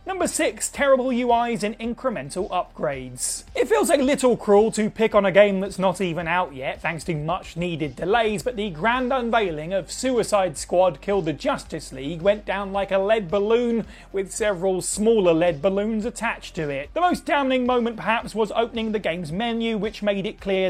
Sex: male